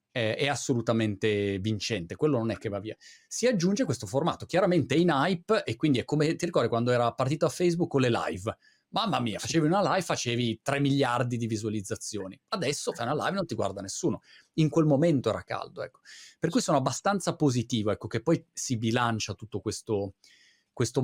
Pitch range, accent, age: 110-150 Hz, native, 30-49